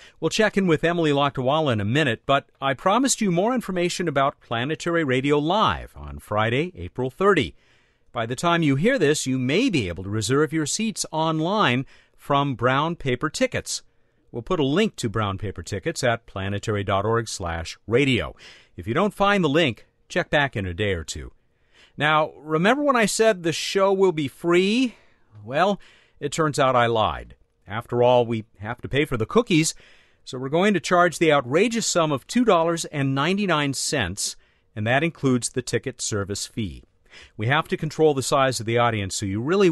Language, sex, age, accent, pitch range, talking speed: English, male, 50-69, American, 115-170 Hz, 180 wpm